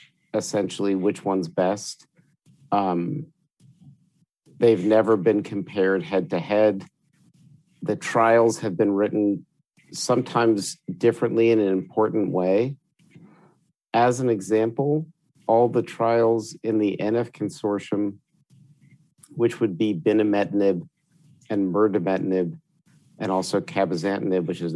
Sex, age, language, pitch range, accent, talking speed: male, 50-69, English, 100-125 Hz, American, 100 wpm